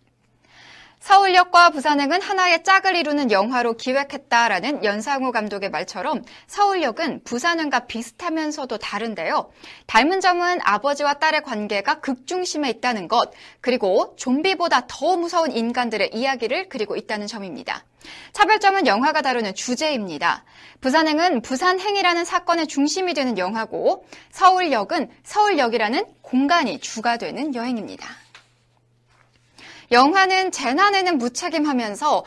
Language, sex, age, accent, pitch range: Korean, female, 20-39, native, 235-355 Hz